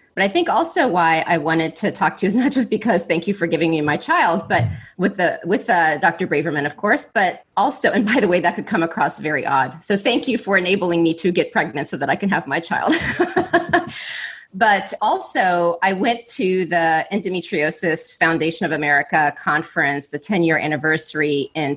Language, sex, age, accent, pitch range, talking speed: English, female, 30-49, American, 155-190 Hz, 205 wpm